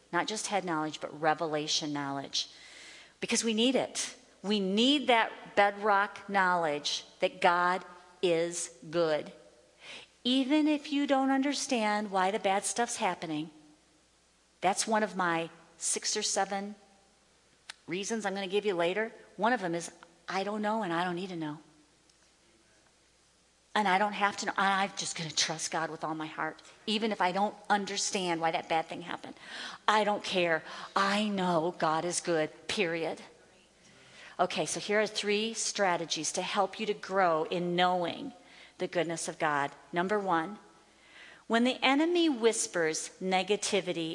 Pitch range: 165-210 Hz